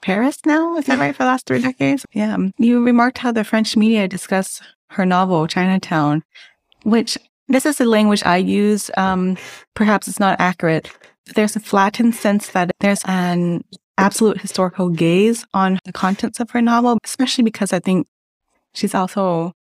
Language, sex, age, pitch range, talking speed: English, female, 20-39, 175-215 Hz, 170 wpm